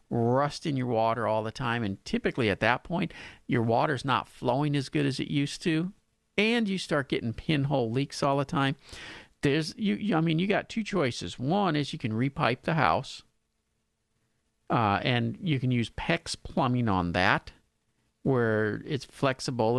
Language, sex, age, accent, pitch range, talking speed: English, male, 50-69, American, 115-155 Hz, 180 wpm